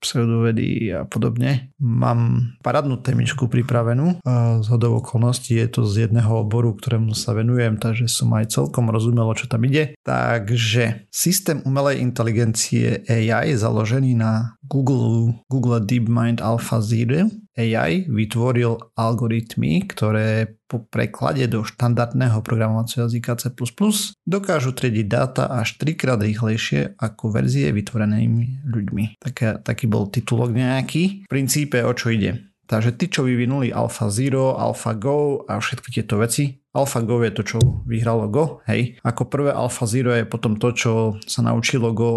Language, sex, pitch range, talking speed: Slovak, male, 115-130 Hz, 135 wpm